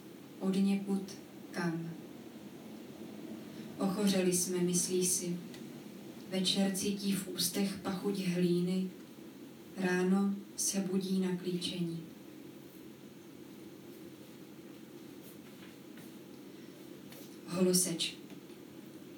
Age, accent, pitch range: 20-39, native, 180-190 Hz